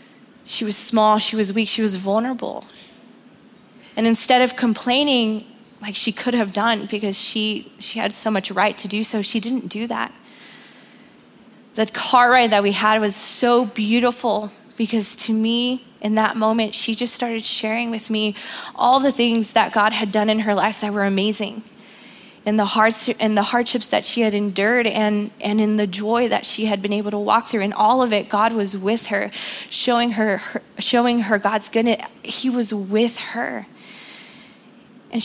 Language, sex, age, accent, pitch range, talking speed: English, female, 20-39, American, 215-245 Hz, 185 wpm